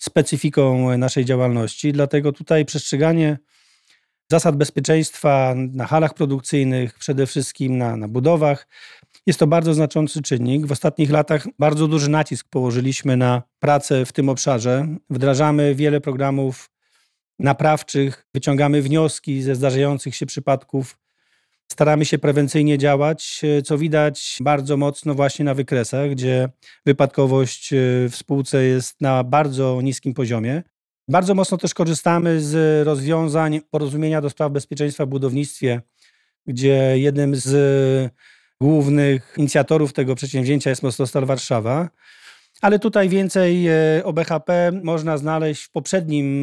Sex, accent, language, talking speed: male, native, Polish, 120 wpm